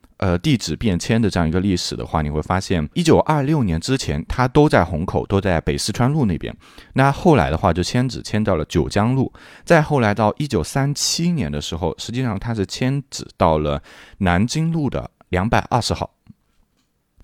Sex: male